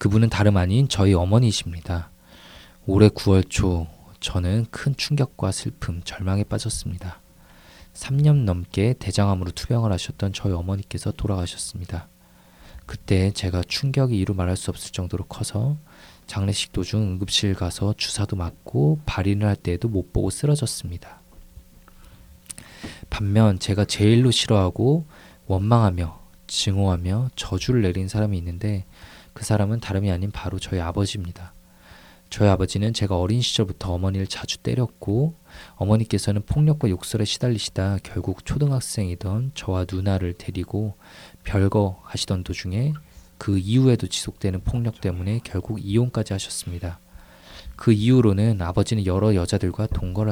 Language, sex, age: Korean, male, 20-39